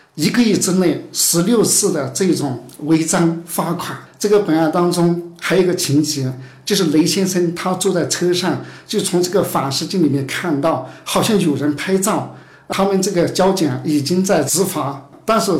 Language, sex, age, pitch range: Chinese, male, 50-69, 150-185 Hz